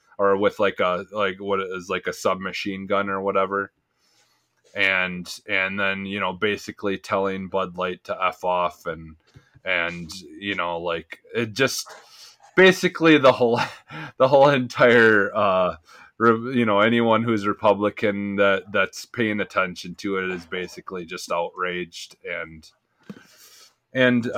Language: English